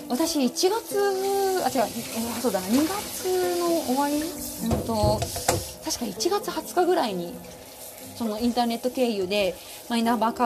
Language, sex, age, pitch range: Japanese, female, 20-39, 225-310 Hz